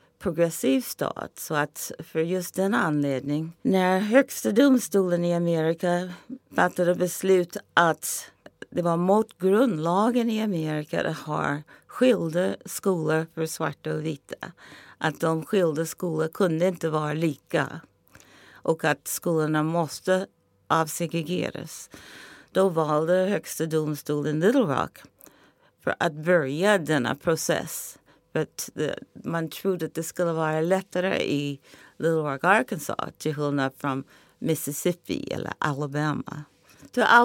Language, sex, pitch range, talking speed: English, female, 155-185 Hz, 120 wpm